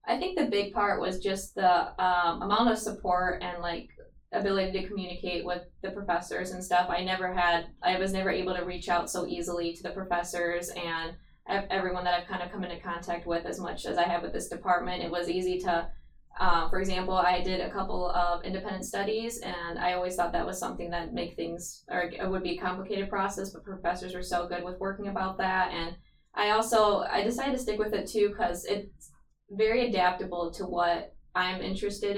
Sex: female